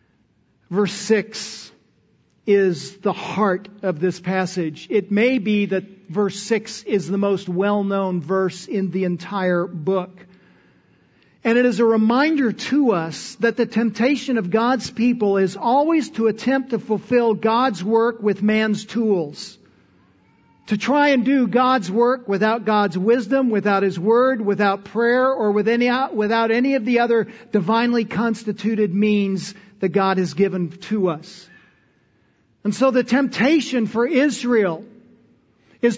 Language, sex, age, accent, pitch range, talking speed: English, male, 50-69, American, 200-265 Hz, 140 wpm